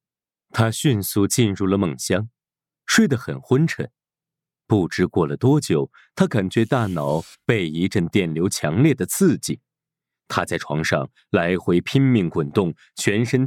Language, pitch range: Chinese, 95-150 Hz